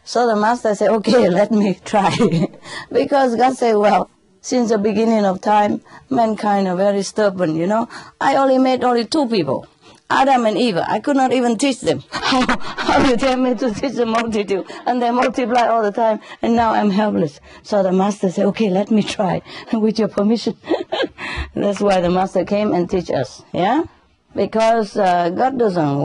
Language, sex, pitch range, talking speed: English, female, 185-240 Hz, 185 wpm